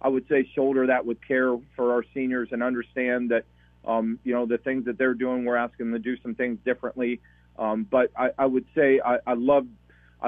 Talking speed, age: 220 wpm, 40-59